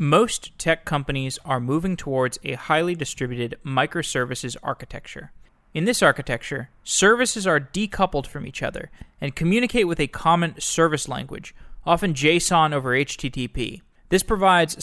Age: 20-39